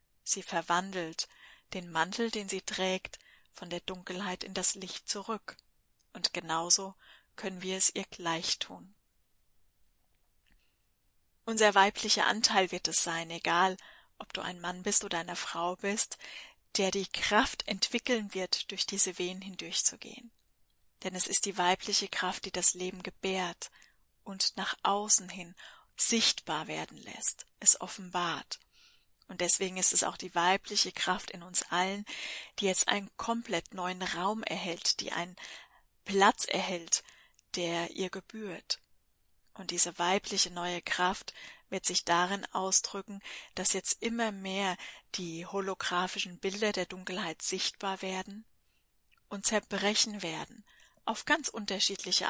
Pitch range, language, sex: 180-205 Hz, German, female